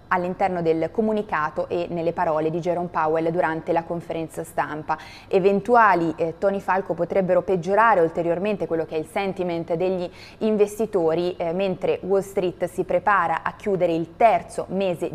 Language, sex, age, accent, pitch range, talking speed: Italian, female, 20-39, native, 170-205 Hz, 150 wpm